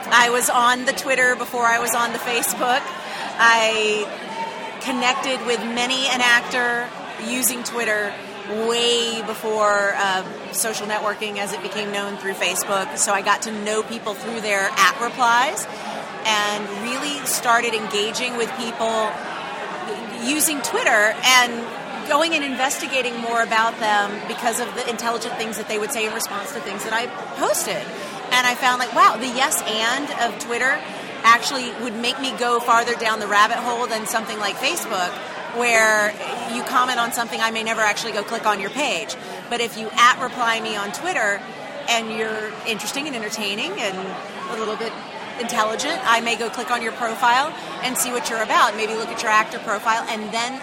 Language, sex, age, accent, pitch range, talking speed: English, female, 30-49, American, 215-245 Hz, 175 wpm